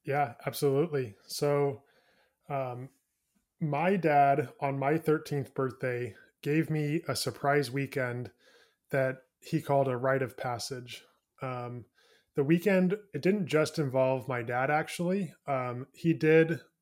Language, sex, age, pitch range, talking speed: English, male, 20-39, 130-155 Hz, 125 wpm